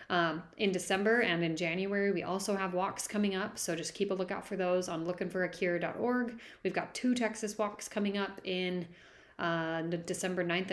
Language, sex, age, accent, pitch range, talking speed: English, female, 30-49, American, 170-210 Hz, 180 wpm